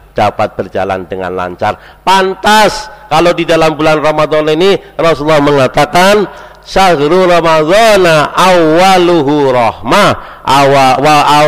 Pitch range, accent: 110-150 Hz, native